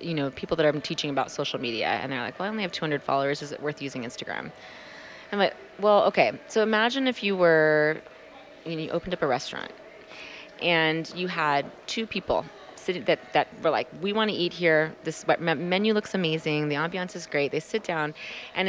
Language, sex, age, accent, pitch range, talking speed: English, female, 30-49, American, 150-185 Hz, 220 wpm